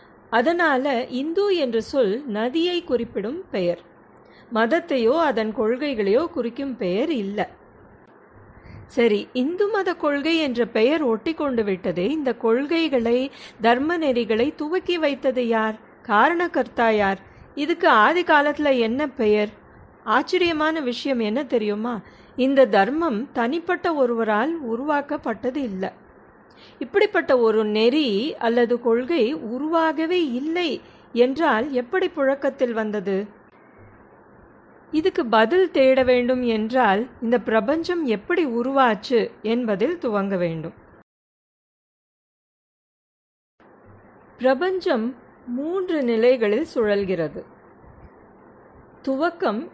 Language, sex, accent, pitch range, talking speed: Tamil, female, native, 225-310 Hz, 85 wpm